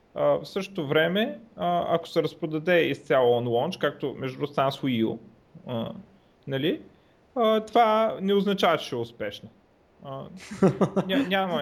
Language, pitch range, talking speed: Bulgarian, 130-185 Hz, 105 wpm